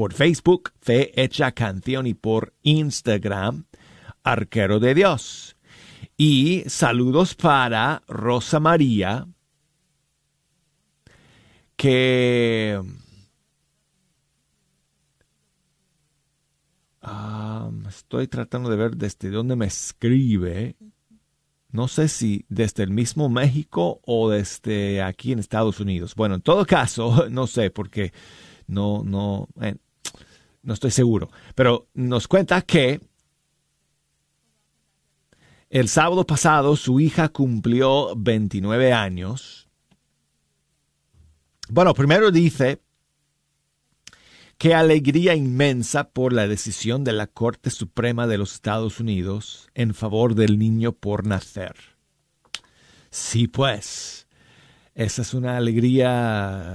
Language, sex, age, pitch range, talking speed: Spanish, male, 40-59, 105-145 Hz, 95 wpm